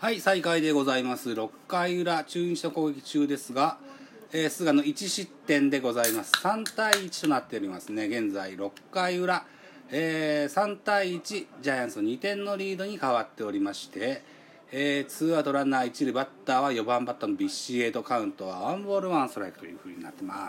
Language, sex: Japanese, male